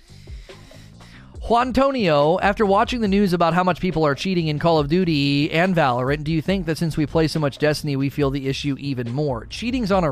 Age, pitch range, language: 30-49, 130-180 Hz, English